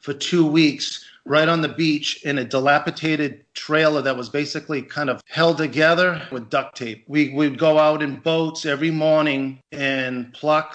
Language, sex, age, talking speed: English, male, 40-59, 175 wpm